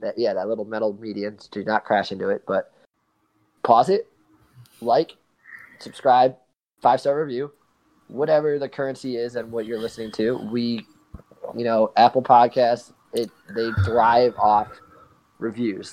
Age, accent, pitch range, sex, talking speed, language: 20-39, American, 120-145 Hz, male, 145 wpm, English